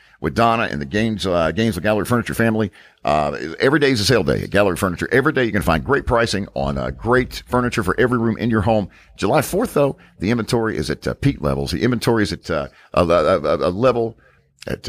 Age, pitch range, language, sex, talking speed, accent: 50-69, 100-125 Hz, English, male, 220 wpm, American